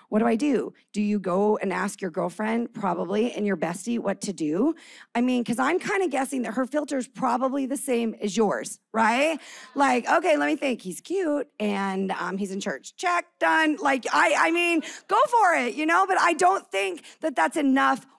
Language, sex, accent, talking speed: English, female, American, 215 wpm